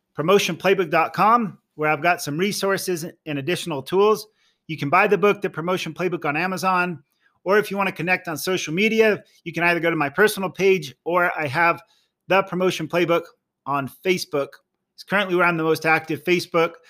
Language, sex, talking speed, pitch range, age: English, male, 185 wpm, 160-195 Hz, 40-59